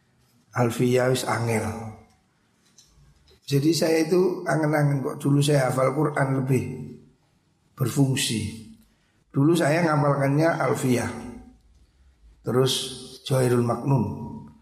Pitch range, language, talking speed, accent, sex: 115-145 Hz, Indonesian, 85 wpm, native, male